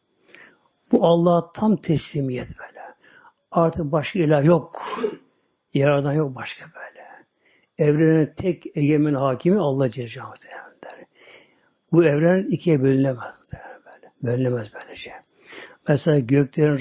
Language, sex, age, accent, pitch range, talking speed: Turkish, male, 60-79, native, 145-175 Hz, 105 wpm